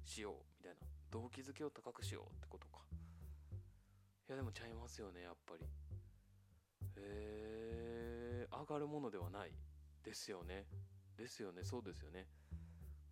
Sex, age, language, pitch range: male, 20-39, Japanese, 75-100 Hz